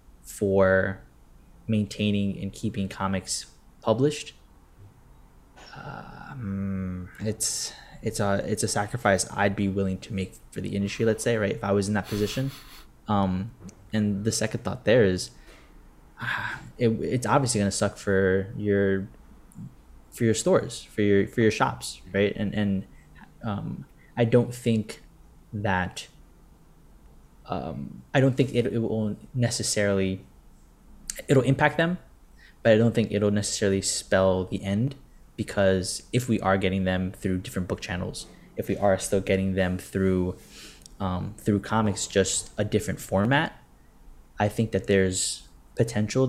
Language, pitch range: English, 95-110 Hz